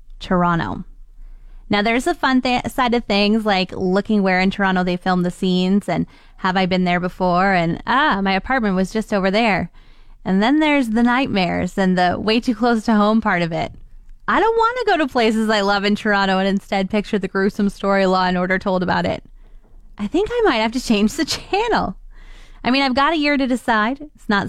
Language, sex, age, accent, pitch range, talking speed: English, female, 20-39, American, 185-240 Hz, 220 wpm